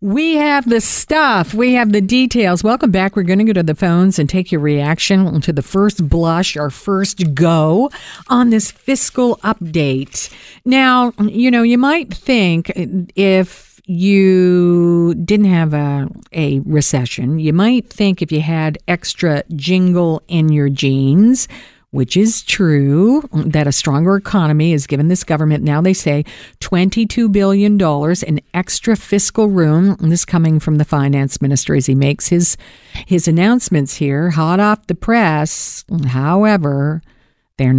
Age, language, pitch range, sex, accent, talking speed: 50-69, English, 145-195 Hz, female, American, 150 wpm